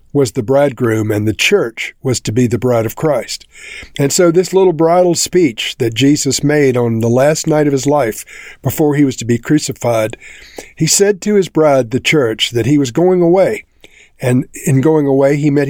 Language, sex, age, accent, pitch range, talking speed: English, male, 50-69, American, 125-165 Hz, 205 wpm